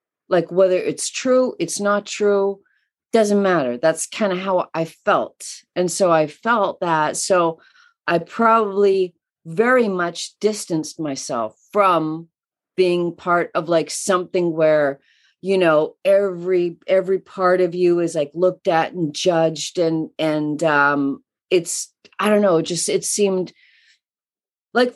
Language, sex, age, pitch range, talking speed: English, female, 40-59, 155-200 Hz, 140 wpm